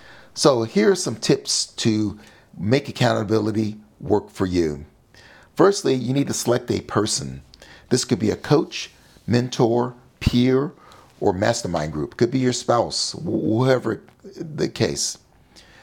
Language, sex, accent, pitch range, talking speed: English, male, American, 105-130 Hz, 135 wpm